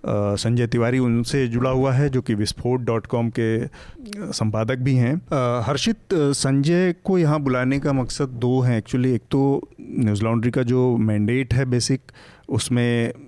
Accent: native